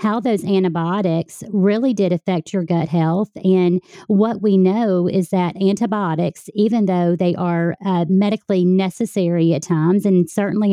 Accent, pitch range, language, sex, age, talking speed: American, 180-210 Hz, English, female, 40-59, 150 wpm